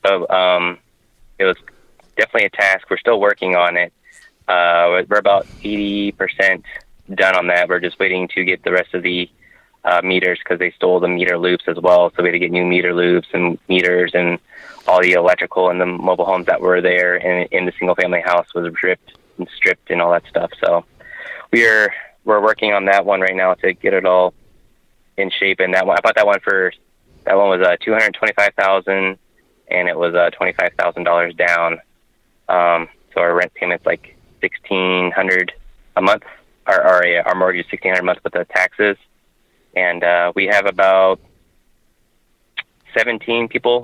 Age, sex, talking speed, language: 20-39, male, 195 wpm, English